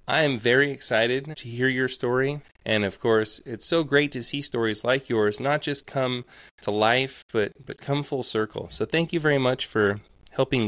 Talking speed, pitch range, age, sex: 200 wpm, 105-145 Hz, 20-39, male